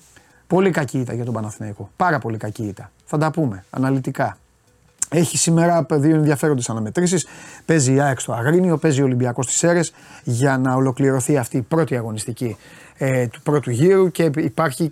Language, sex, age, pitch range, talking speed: Greek, male, 30-49, 130-165 Hz, 170 wpm